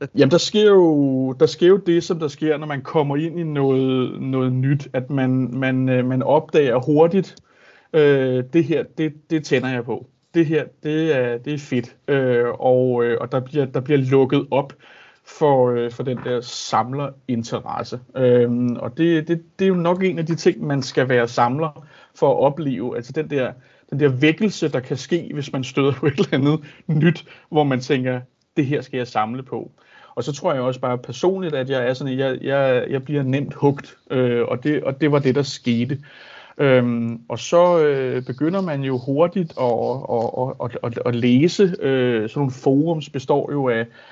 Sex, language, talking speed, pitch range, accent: male, Danish, 200 wpm, 125-155 Hz, native